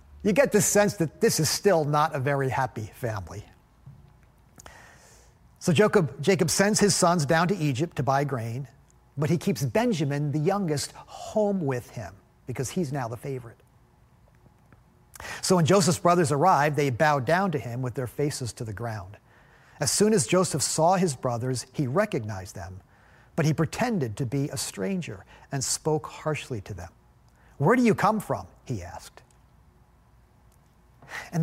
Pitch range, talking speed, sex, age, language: 130-185 Hz, 160 wpm, male, 50-69, English